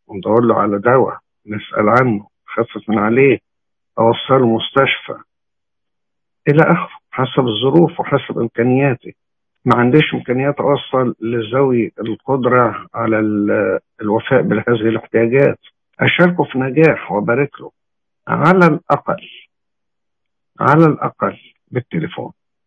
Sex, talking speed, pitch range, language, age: male, 100 wpm, 115-155 Hz, English, 60-79